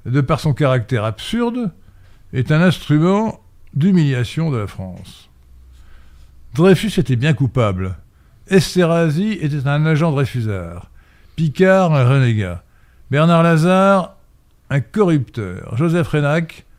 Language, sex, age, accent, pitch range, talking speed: French, male, 60-79, French, 105-170 Hz, 105 wpm